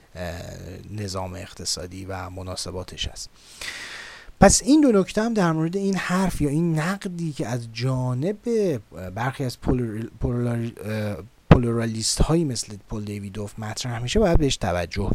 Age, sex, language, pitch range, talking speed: 30-49, male, Persian, 95-130 Hz, 135 wpm